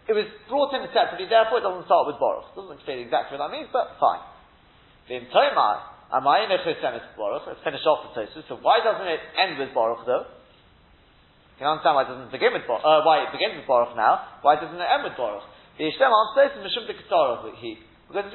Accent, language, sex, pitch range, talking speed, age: British, English, male, 140-185 Hz, 195 wpm, 30-49